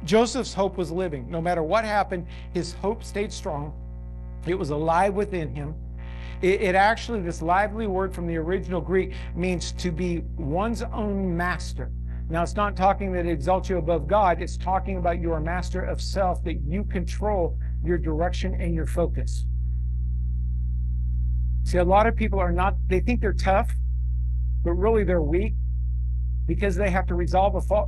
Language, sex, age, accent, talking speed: English, male, 50-69, American, 170 wpm